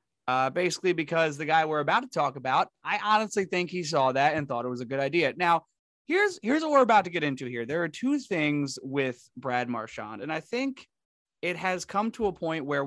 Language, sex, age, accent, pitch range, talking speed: English, male, 30-49, American, 130-180 Hz, 235 wpm